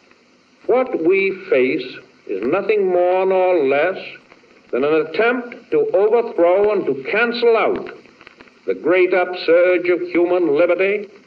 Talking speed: 120 wpm